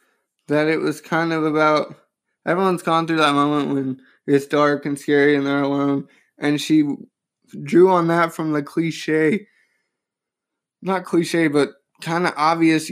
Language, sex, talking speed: English, male, 155 wpm